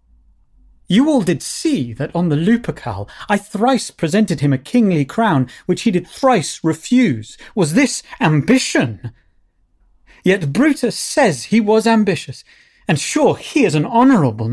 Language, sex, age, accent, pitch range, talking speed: English, male, 30-49, British, 120-185 Hz, 145 wpm